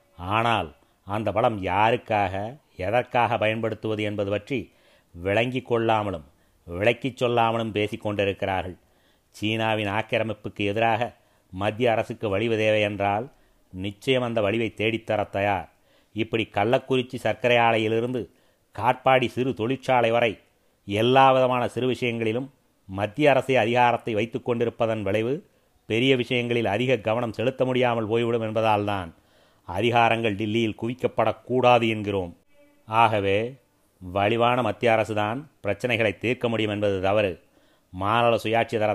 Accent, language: native, Tamil